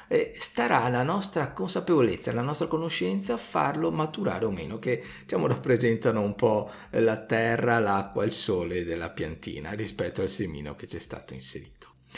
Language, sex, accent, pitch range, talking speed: Italian, male, native, 100-145 Hz, 160 wpm